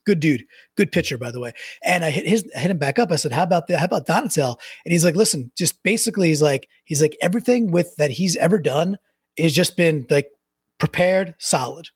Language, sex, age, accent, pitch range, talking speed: English, male, 30-49, American, 150-200 Hz, 230 wpm